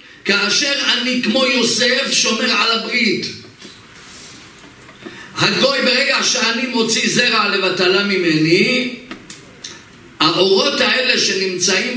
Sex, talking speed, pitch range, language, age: male, 85 wpm, 205-270 Hz, Hebrew, 50-69